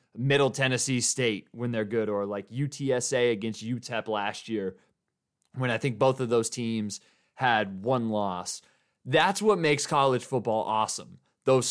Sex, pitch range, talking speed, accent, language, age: male, 100-130 Hz, 155 wpm, American, English, 20-39